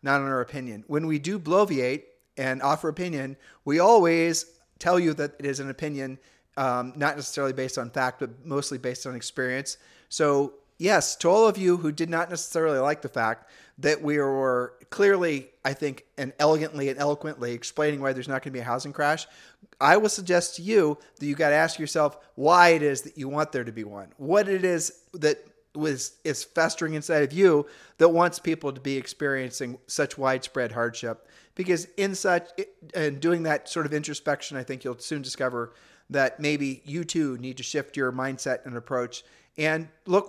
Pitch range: 130-165 Hz